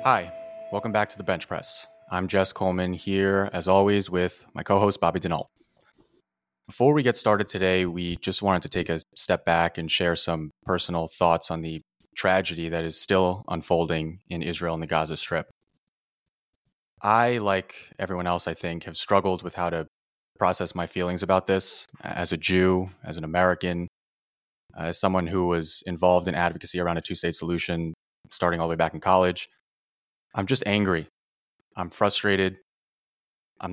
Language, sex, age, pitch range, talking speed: English, male, 20-39, 85-95 Hz, 175 wpm